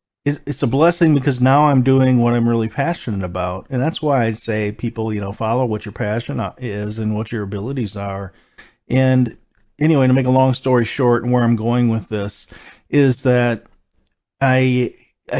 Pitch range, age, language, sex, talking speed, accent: 115-140 Hz, 40-59, English, male, 185 wpm, American